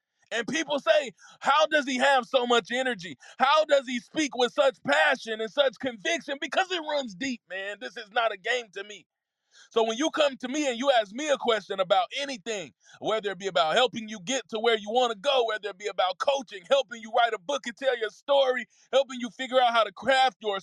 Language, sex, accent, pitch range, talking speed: English, male, American, 215-285 Hz, 235 wpm